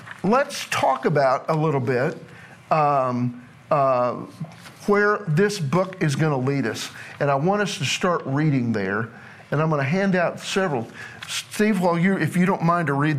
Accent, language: American, English